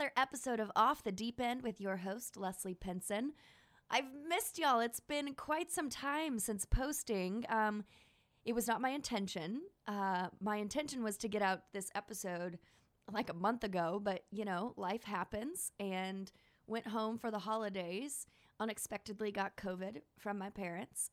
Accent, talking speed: American, 160 wpm